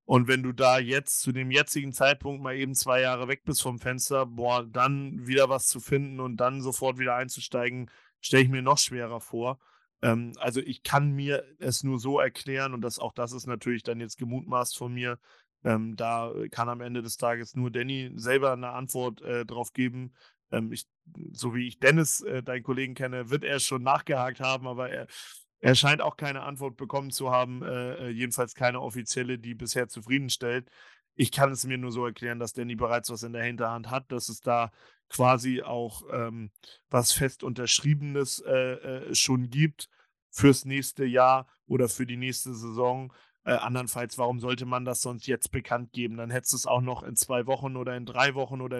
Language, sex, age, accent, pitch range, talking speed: German, male, 30-49, German, 120-135 Hz, 200 wpm